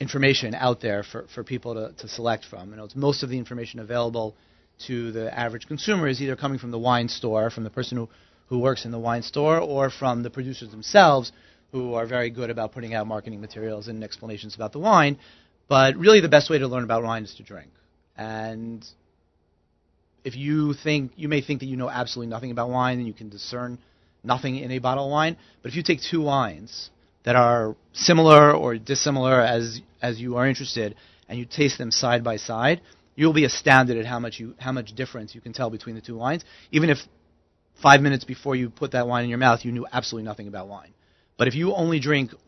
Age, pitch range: 30-49, 110-135 Hz